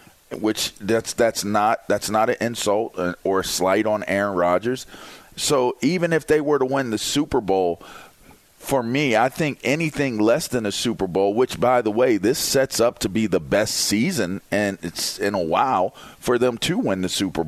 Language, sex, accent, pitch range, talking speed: English, male, American, 110-145 Hz, 195 wpm